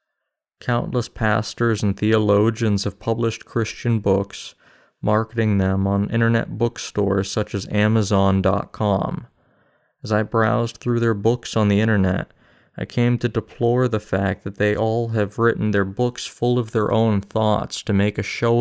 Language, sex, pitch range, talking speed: English, male, 100-115 Hz, 150 wpm